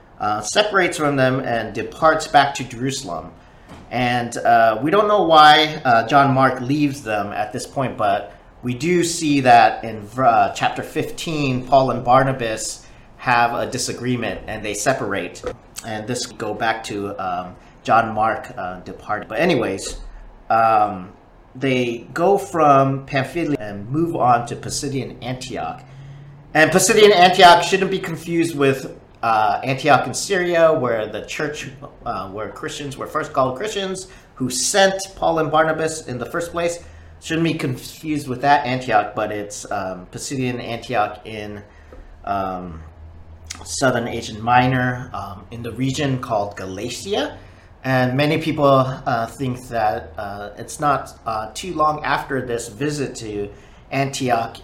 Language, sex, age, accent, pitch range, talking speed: English, male, 40-59, American, 105-150 Hz, 145 wpm